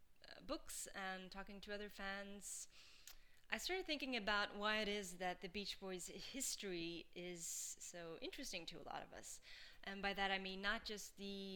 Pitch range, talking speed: 180-215 Hz, 175 wpm